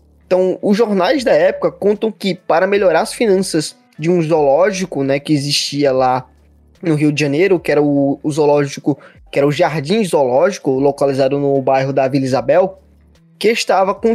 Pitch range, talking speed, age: 160-220 Hz, 175 wpm, 20-39